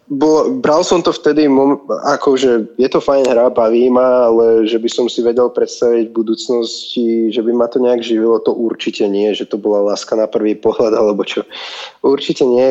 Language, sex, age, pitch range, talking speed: Slovak, male, 20-39, 110-135 Hz, 205 wpm